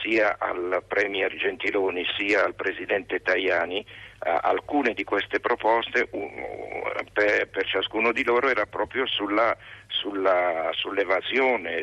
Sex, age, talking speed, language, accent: male, 60-79, 105 wpm, Italian, native